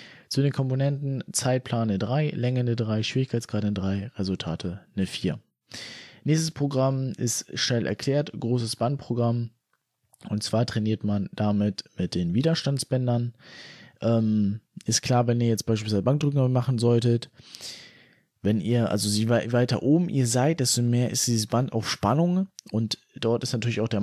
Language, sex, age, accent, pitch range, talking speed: German, male, 20-39, German, 110-130 Hz, 145 wpm